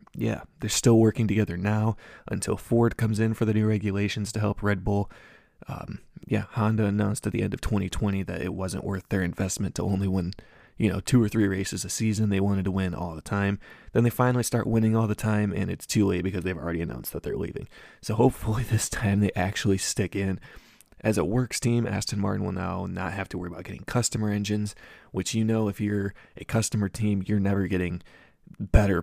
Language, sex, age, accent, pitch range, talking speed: English, male, 20-39, American, 95-110 Hz, 220 wpm